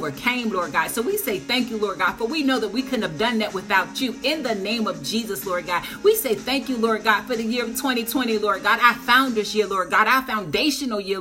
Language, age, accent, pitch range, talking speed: English, 40-59, American, 225-270 Hz, 270 wpm